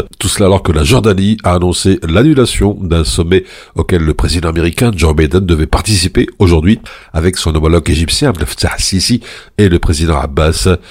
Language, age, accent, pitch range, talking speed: French, 60-79, French, 85-105 Hz, 170 wpm